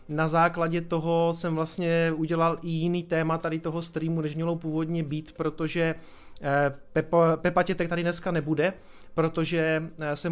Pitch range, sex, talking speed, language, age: 150-165 Hz, male, 145 wpm, Czech, 30-49